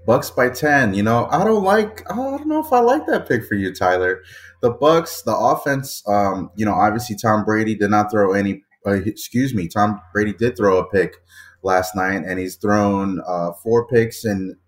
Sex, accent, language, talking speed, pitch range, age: male, American, English, 210 wpm, 95-115 Hz, 20-39